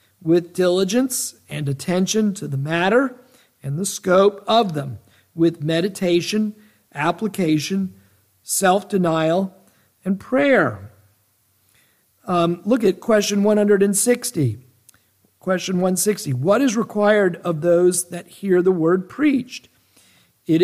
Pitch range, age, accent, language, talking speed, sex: 150-205 Hz, 50-69, American, English, 105 wpm, male